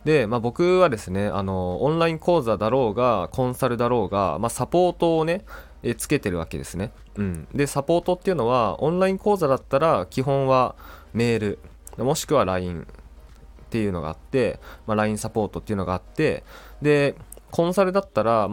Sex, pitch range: male, 90-140 Hz